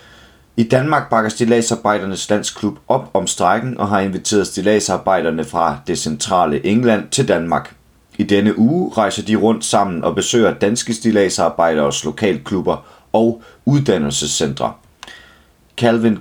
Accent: native